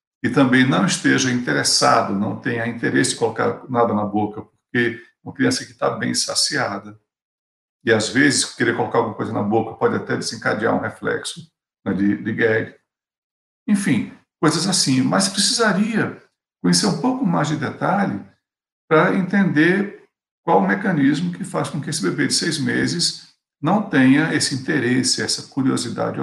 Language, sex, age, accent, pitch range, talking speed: Portuguese, male, 60-79, Brazilian, 120-185 Hz, 160 wpm